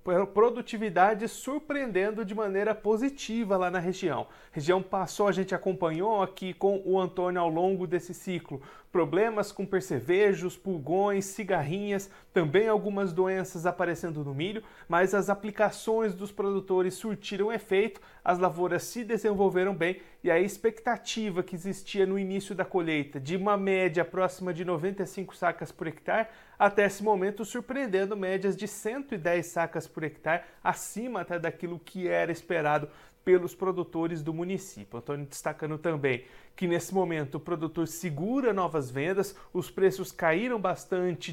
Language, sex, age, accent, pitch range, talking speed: Portuguese, male, 40-59, Brazilian, 170-200 Hz, 140 wpm